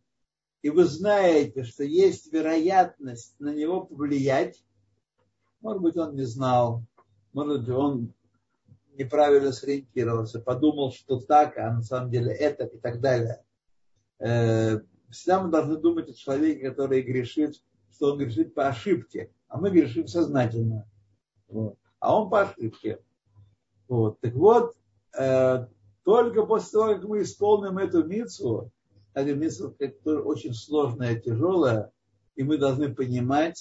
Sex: male